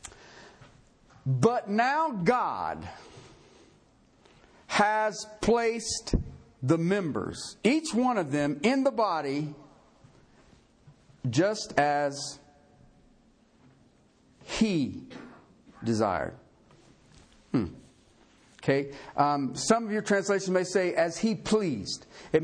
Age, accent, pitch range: 50-69, American, 145-230 Hz